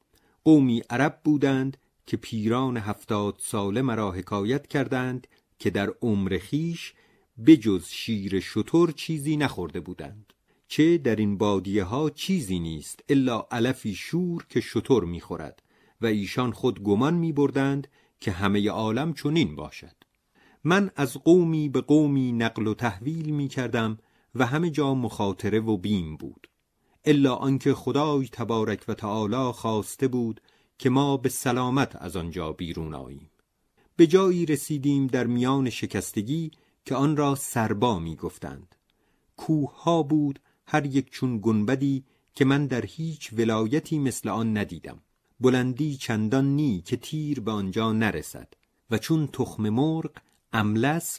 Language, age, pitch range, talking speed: Persian, 40-59, 110-145 Hz, 135 wpm